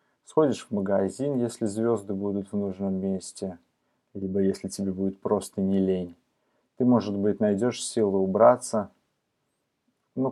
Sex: male